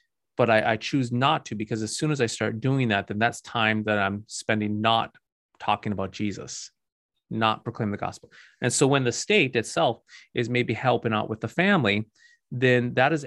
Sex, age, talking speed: male, 30-49, 200 wpm